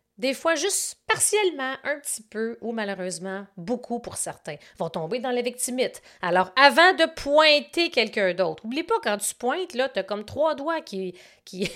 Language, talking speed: French, 185 wpm